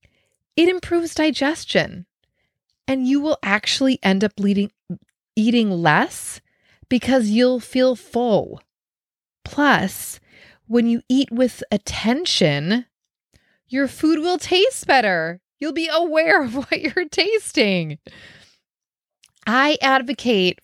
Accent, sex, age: American, female, 20-39